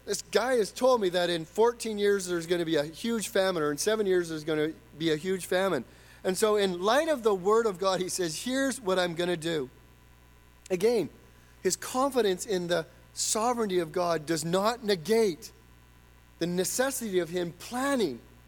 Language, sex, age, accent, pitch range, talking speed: English, male, 40-59, American, 155-245 Hz, 195 wpm